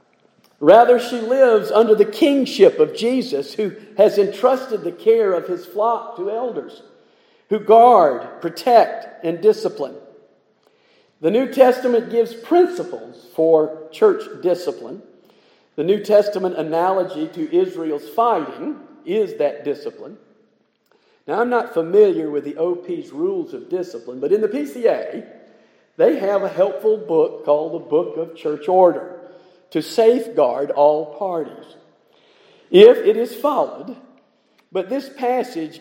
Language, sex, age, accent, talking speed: English, male, 50-69, American, 130 wpm